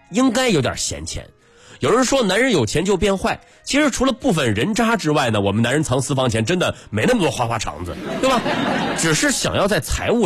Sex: male